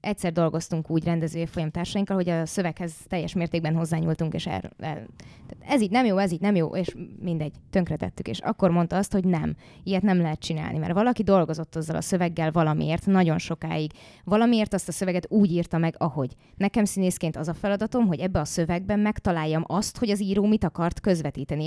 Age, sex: 20-39, female